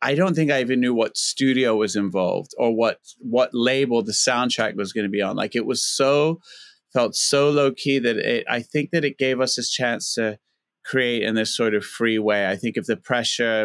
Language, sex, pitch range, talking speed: English, male, 110-140 Hz, 225 wpm